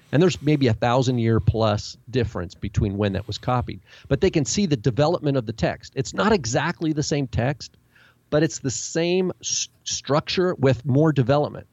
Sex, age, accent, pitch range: male, 40-59, American, 110-135 Hz